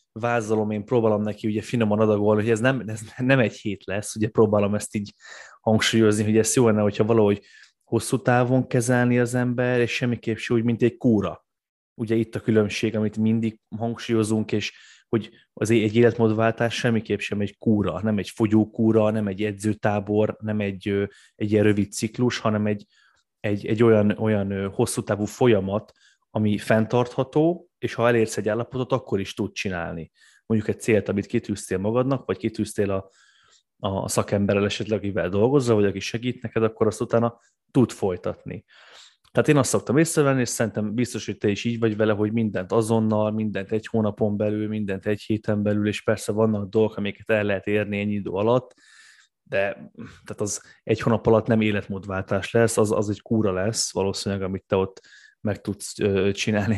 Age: 20-39